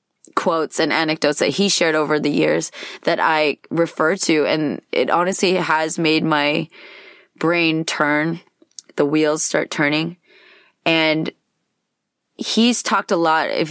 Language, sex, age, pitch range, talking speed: English, female, 20-39, 150-180 Hz, 135 wpm